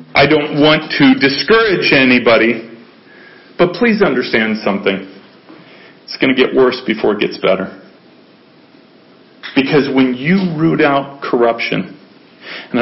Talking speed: 120 wpm